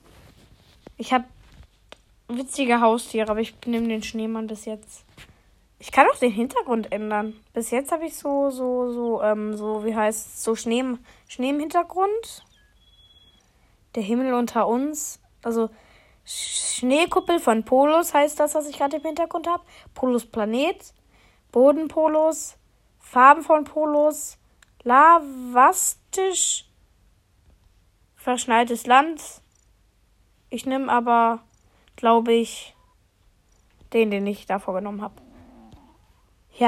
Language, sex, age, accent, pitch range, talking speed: German, female, 20-39, German, 225-285 Hz, 115 wpm